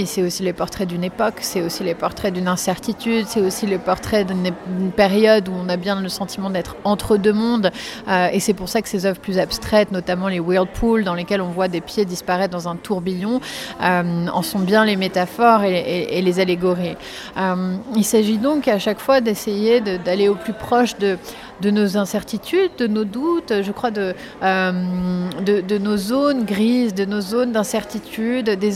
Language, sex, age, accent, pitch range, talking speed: French, female, 30-49, French, 190-225 Hz, 200 wpm